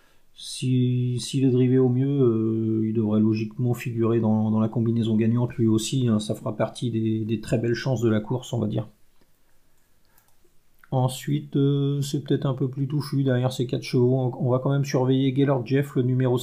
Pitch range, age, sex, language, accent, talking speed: 120-135 Hz, 40-59, male, French, French, 195 wpm